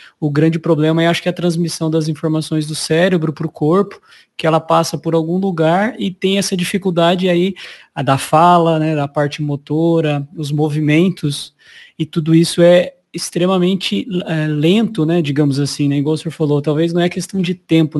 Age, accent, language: 20-39, Brazilian, Portuguese